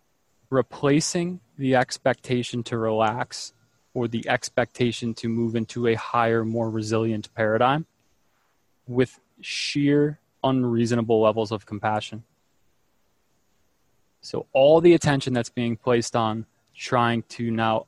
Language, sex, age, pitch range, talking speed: English, male, 20-39, 115-140 Hz, 110 wpm